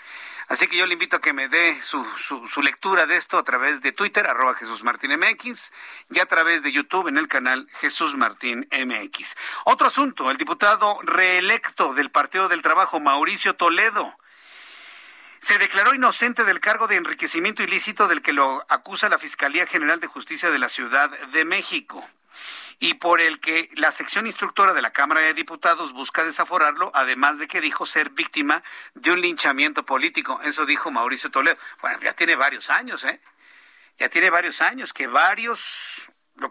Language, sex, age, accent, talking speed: Spanish, male, 50-69, Mexican, 175 wpm